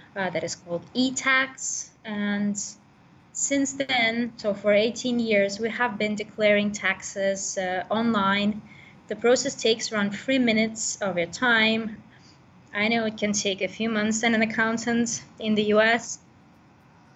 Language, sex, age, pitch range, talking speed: English, female, 20-39, 195-235 Hz, 145 wpm